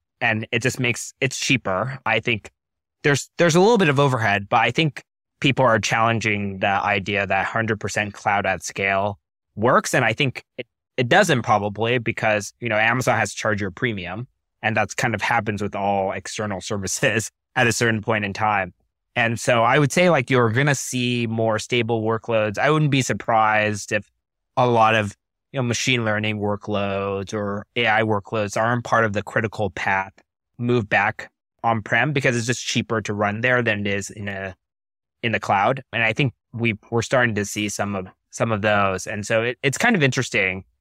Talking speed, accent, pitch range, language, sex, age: 195 wpm, American, 100-125 Hz, English, male, 20-39